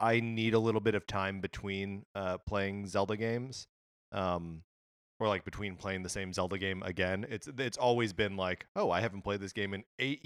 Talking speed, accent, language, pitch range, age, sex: 205 wpm, American, English, 85-105 Hz, 30-49, male